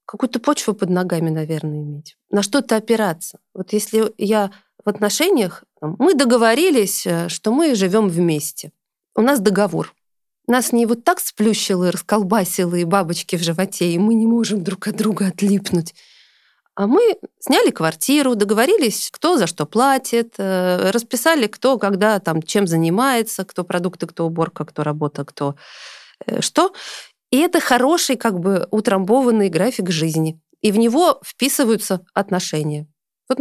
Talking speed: 140 wpm